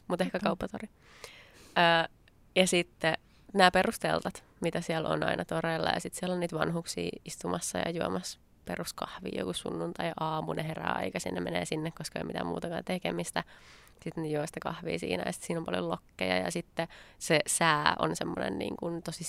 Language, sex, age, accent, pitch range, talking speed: Finnish, female, 20-39, native, 150-175 Hz, 175 wpm